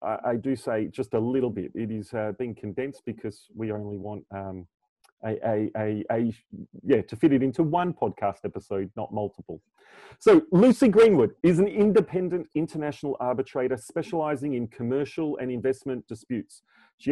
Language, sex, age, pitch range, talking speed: English, male, 30-49, 115-150 Hz, 160 wpm